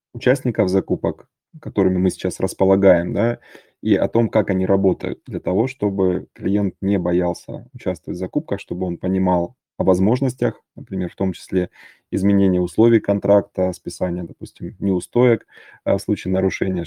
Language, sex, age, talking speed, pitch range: Russian, male, 20-39, 140 wpm, 90-105 Hz